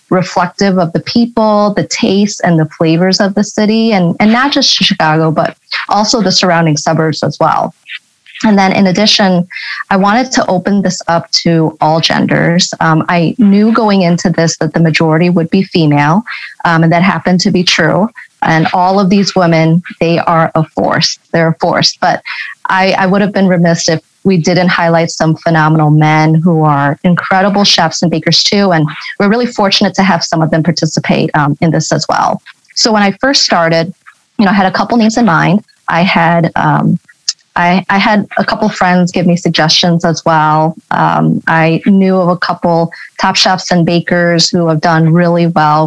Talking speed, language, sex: 190 wpm, English, female